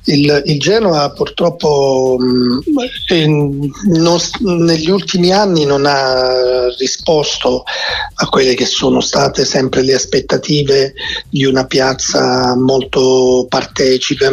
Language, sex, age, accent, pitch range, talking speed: Italian, male, 40-59, native, 130-165 Hz, 95 wpm